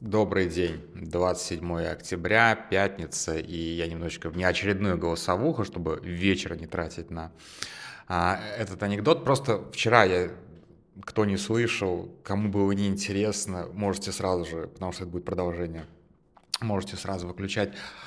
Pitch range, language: 90-115 Hz, Russian